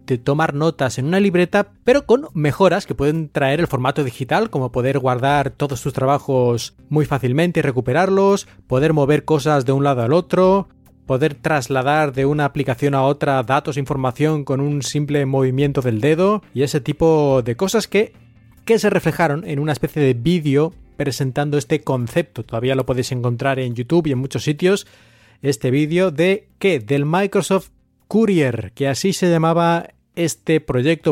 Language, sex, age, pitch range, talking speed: Spanish, male, 30-49, 135-165 Hz, 170 wpm